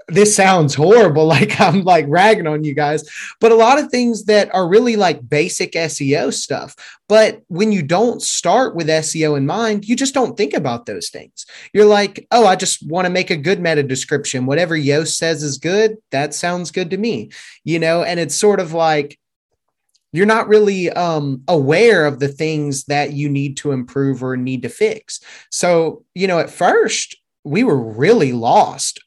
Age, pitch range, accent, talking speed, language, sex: 30-49, 145-200 Hz, American, 190 wpm, English, male